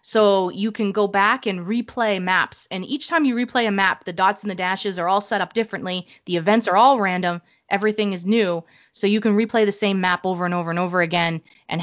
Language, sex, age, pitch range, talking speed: English, female, 20-39, 160-205 Hz, 240 wpm